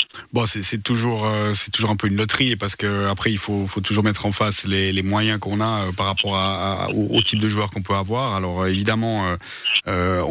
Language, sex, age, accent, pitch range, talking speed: French, male, 30-49, French, 95-110 Hz, 250 wpm